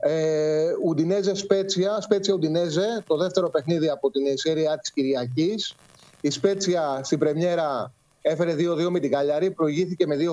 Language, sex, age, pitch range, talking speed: Greek, male, 30-49, 150-185 Hz, 145 wpm